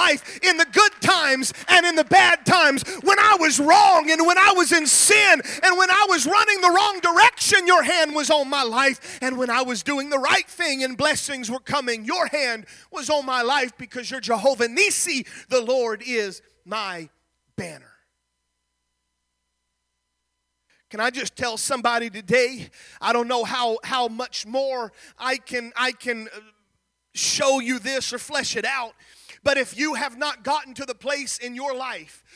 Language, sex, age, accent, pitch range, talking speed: English, male, 30-49, American, 240-305 Hz, 180 wpm